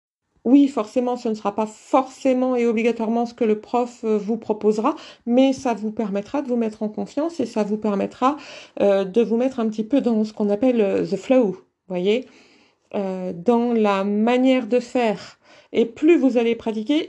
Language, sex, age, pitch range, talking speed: French, female, 50-69, 210-245 Hz, 195 wpm